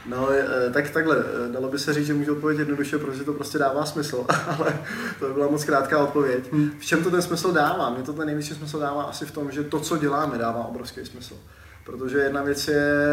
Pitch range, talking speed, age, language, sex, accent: 135-145 Hz, 225 wpm, 20-39, Czech, male, native